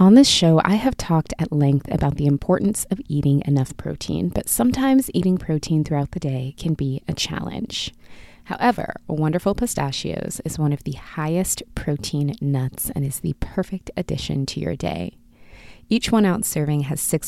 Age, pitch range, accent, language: 20-39, 140-185 Hz, American, English